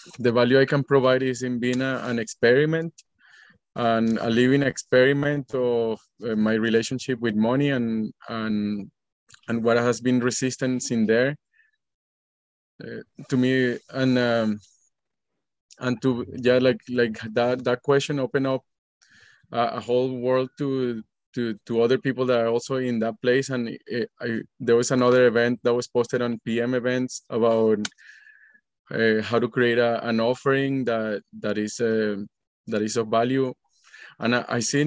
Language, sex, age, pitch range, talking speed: English, male, 20-39, 115-130 Hz, 160 wpm